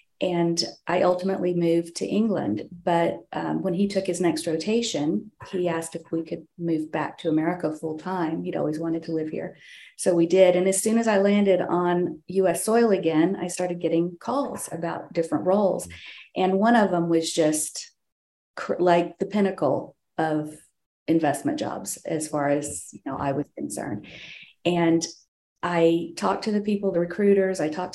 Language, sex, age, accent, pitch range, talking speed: English, female, 40-59, American, 170-195 Hz, 175 wpm